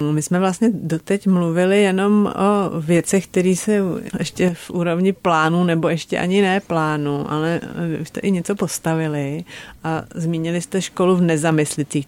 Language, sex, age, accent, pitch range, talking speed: Czech, female, 40-59, native, 150-170 Hz, 150 wpm